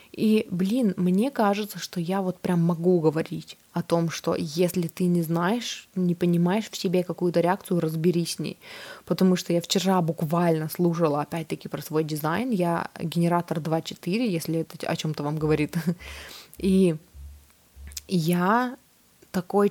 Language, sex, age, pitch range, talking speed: Russian, female, 20-39, 170-190 Hz, 145 wpm